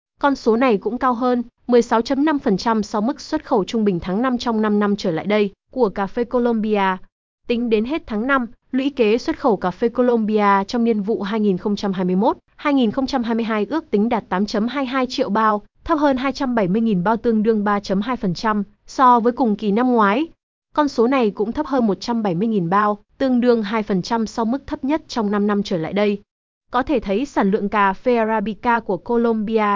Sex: female